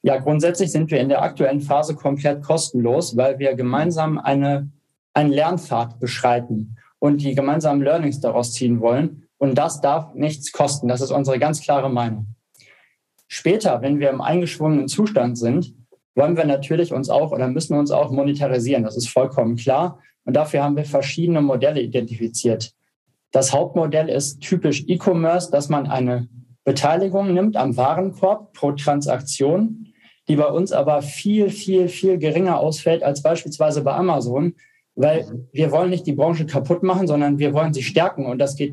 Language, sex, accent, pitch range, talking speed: German, male, German, 135-170 Hz, 165 wpm